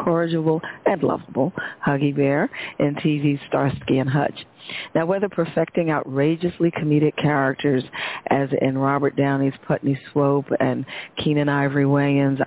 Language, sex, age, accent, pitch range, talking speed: English, female, 40-59, American, 140-160 Hz, 125 wpm